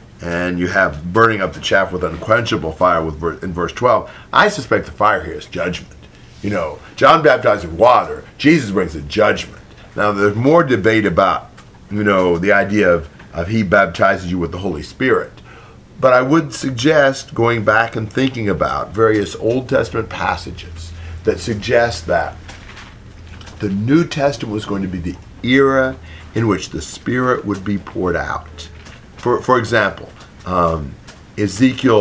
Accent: American